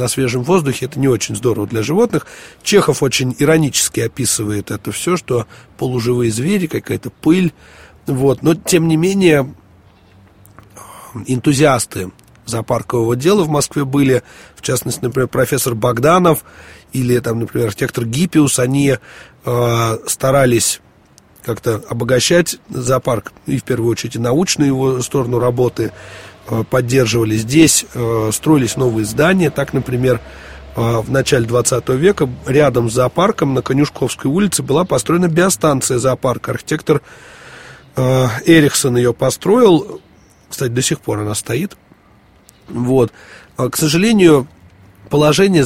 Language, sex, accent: Russian, male, native